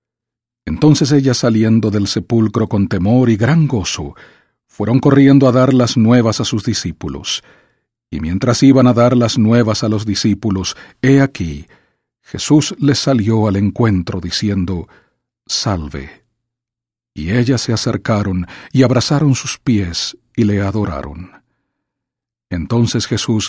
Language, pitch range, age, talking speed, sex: English, 100-125 Hz, 50-69, 130 wpm, male